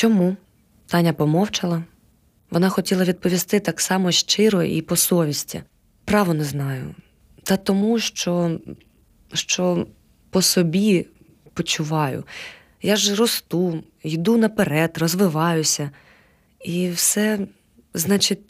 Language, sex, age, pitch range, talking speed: Ukrainian, female, 20-39, 150-180 Hz, 105 wpm